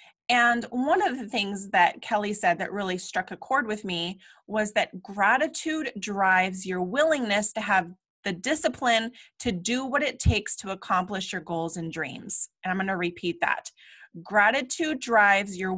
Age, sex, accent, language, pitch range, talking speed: 20-39, female, American, English, 190-255 Hz, 170 wpm